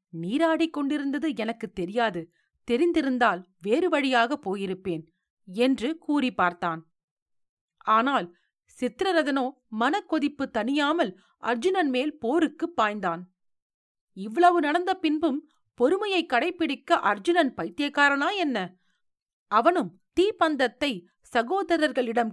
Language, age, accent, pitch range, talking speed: Tamil, 40-59, native, 215-330 Hz, 80 wpm